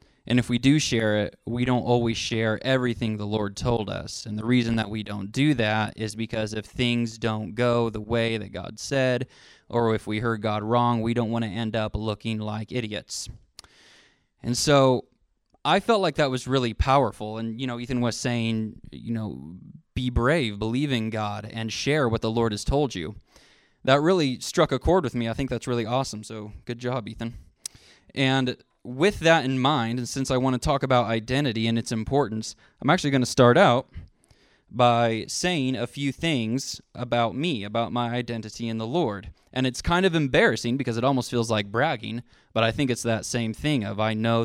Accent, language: American, English